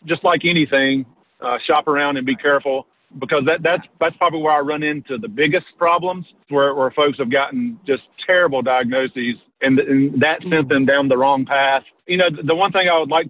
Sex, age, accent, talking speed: male, 40-59, American, 210 wpm